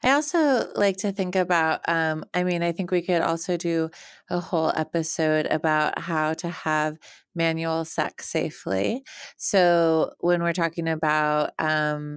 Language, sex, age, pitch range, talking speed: English, female, 30-49, 155-175 Hz, 155 wpm